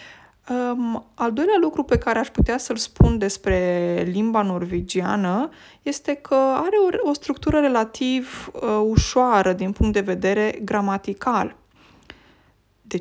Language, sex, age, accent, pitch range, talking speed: Romanian, female, 20-39, native, 195-255 Hz, 130 wpm